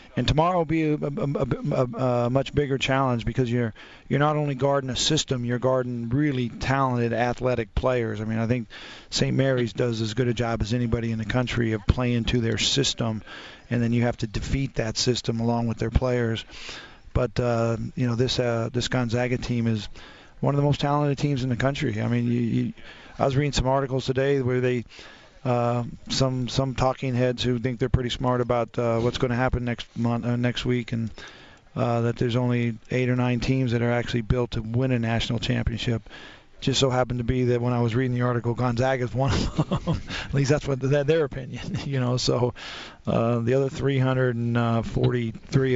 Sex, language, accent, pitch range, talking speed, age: male, English, American, 120-130 Hz, 210 wpm, 40-59